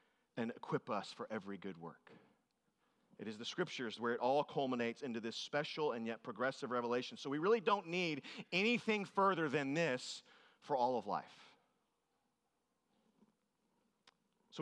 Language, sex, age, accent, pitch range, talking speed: English, male, 40-59, American, 130-195 Hz, 150 wpm